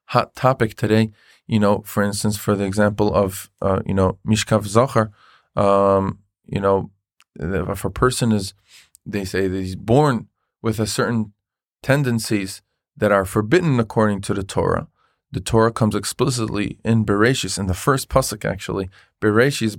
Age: 20-39